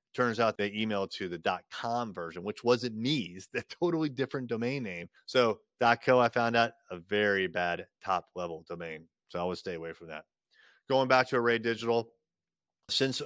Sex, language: male, English